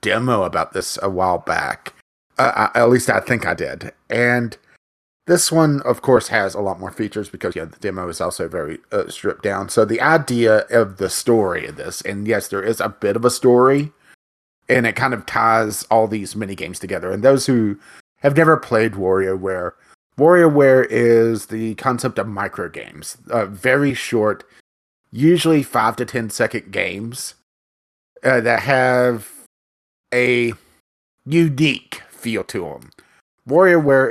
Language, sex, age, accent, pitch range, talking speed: English, male, 30-49, American, 105-130 Hz, 160 wpm